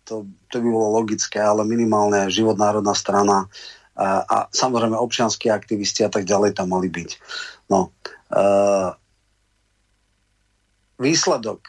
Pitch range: 105-115 Hz